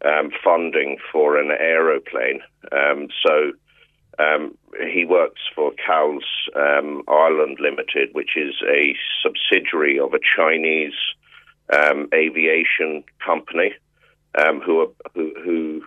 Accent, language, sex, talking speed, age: British, English, male, 100 wpm, 50-69